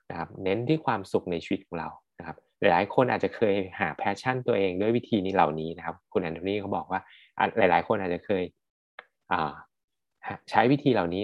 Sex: male